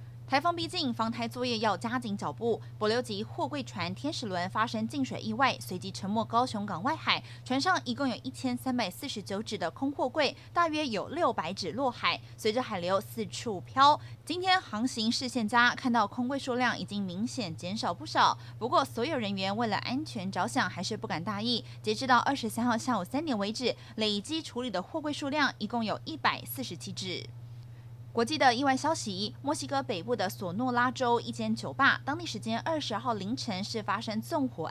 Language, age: Chinese, 20-39